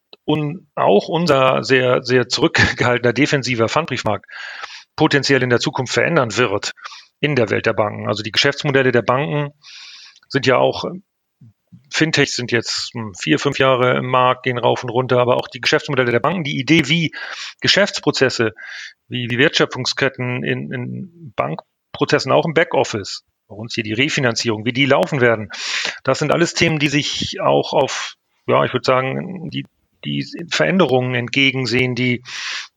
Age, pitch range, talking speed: 40-59, 125-150 Hz, 155 wpm